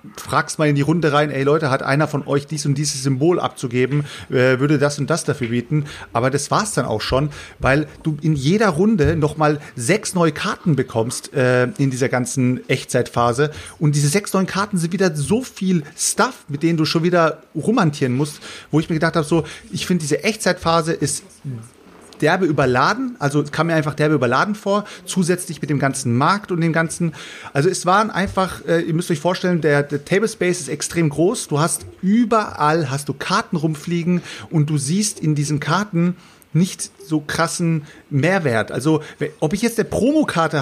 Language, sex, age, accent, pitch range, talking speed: German, male, 30-49, German, 145-180 Hz, 195 wpm